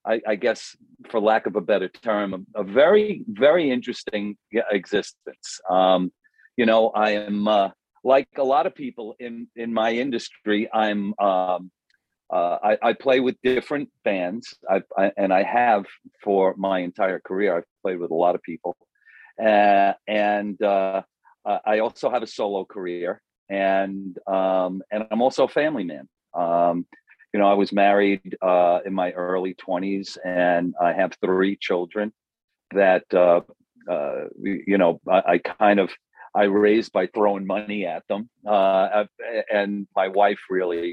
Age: 50-69